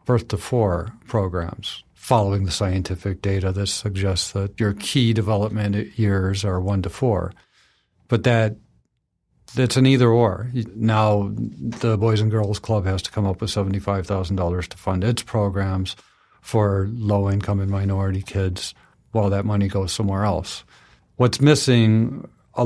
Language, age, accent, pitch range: English, 50-69, American, 100-110 Hz